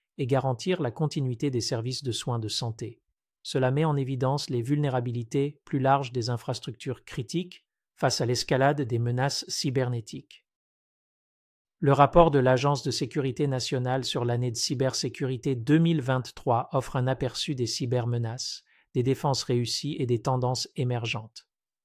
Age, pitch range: 50-69, 120-145 Hz